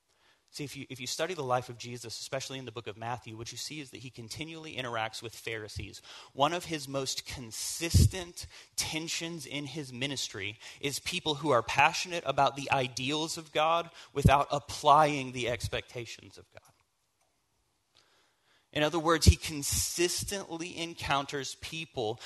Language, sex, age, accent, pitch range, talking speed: English, male, 30-49, American, 120-160 Hz, 155 wpm